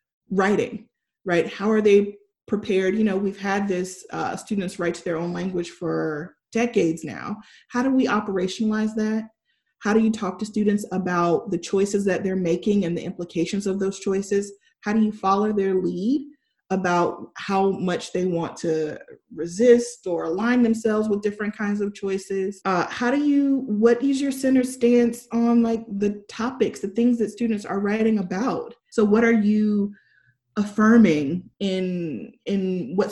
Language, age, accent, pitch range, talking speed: English, 30-49, American, 190-245 Hz, 170 wpm